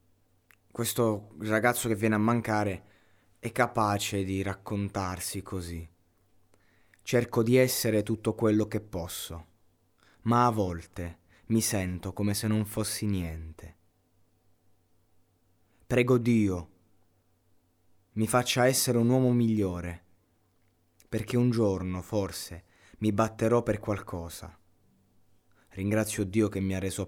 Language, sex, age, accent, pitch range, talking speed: Italian, male, 20-39, native, 90-110 Hz, 110 wpm